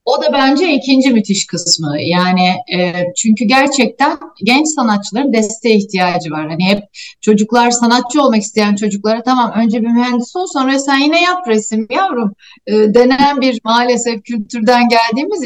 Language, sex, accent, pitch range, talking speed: Turkish, female, native, 205-255 Hz, 150 wpm